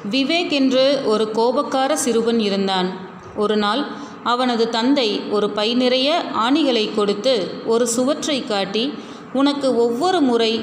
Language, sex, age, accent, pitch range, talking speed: Tamil, female, 30-49, native, 210-260 Hz, 115 wpm